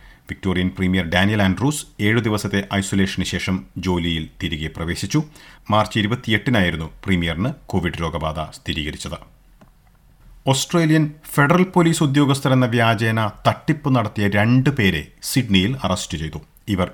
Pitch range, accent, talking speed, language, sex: 95-115 Hz, native, 100 wpm, Malayalam, male